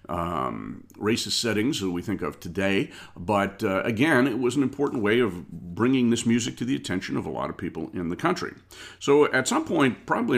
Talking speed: 210 wpm